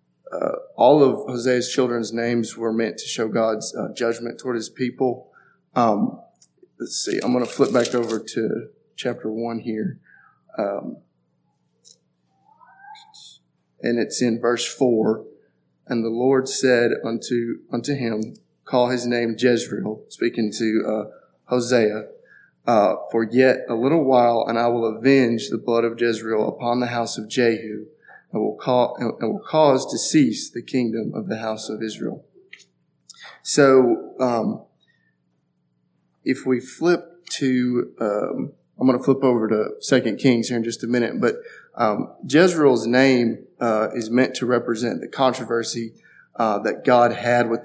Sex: male